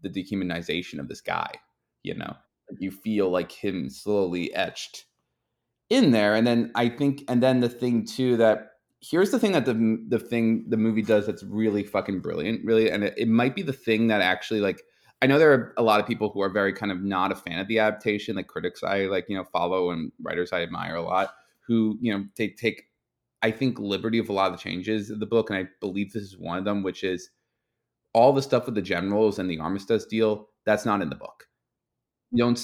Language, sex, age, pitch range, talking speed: English, male, 20-39, 95-115 Hz, 230 wpm